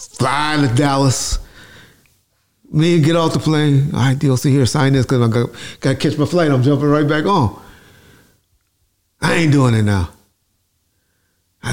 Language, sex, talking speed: English, male, 165 wpm